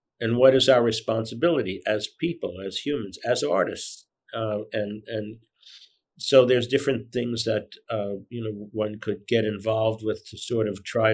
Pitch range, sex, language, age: 105-125 Hz, male, English, 50-69